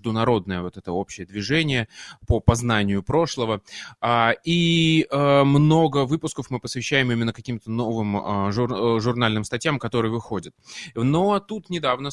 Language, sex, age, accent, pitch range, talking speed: Russian, male, 20-39, native, 115-145 Hz, 115 wpm